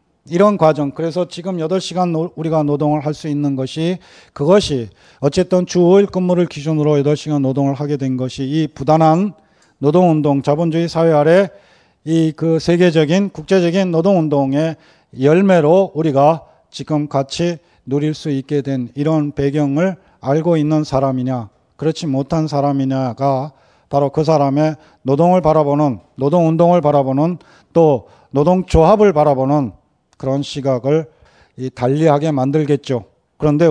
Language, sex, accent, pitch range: Korean, male, native, 140-170 Hz